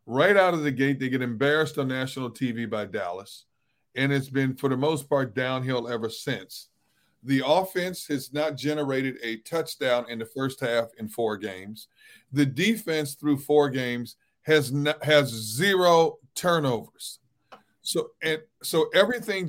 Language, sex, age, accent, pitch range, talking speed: English, male, 40-59, American, 130-155 Hz, 155 wpm